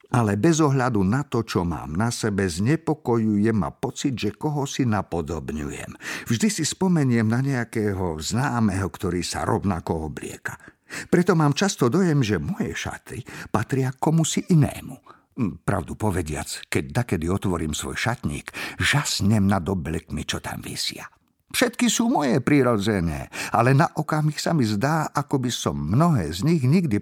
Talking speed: 145 wpm